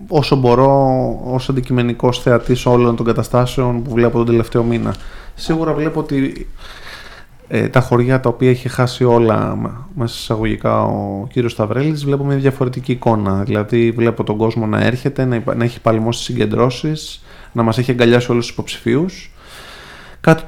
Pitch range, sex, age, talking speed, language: 115-145 Hz, male, 20-39, 155 wpm, Greek